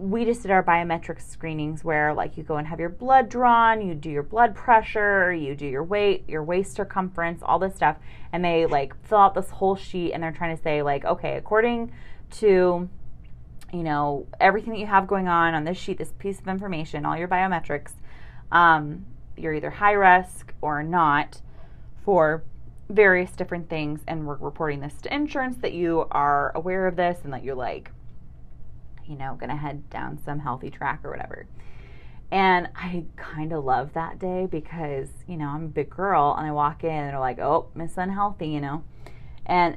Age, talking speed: 20-39, 195 wpm